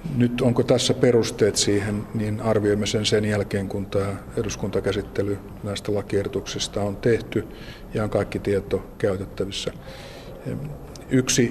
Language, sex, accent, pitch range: Finnish, male, native, 100-105 Hz